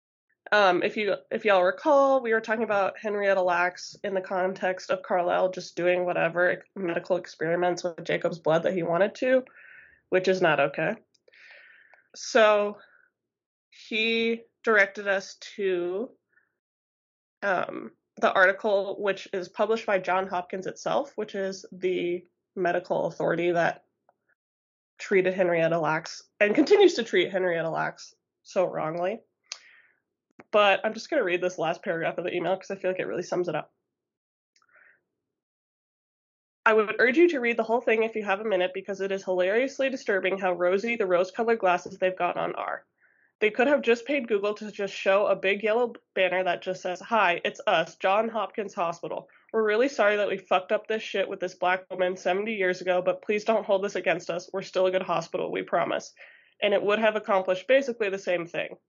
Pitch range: 180-220 Hz